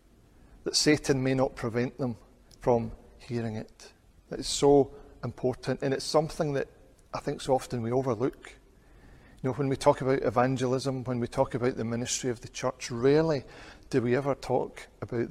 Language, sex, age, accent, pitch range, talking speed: English, male, 40-59, British, 120-140 Hz, 175 wpm